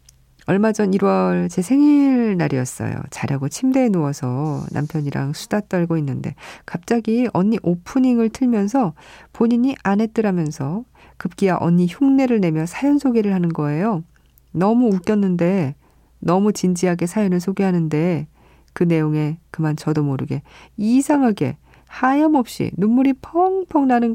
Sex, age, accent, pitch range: female, 40-59, native, 155-215 Hz